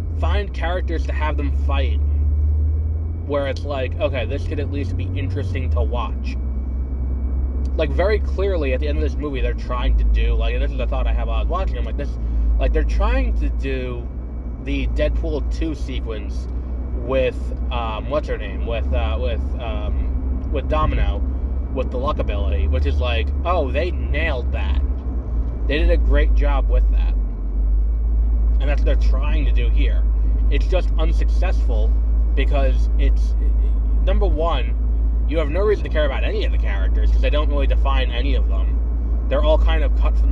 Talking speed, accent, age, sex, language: 185 wpm, American, 20-39, male, English